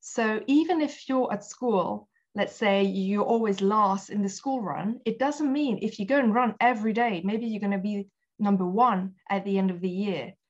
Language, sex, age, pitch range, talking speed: English, female, 20-39, 200-255 Hz, 215 wpm